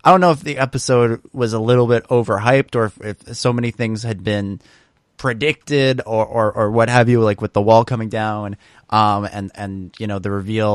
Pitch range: 110-135 Hz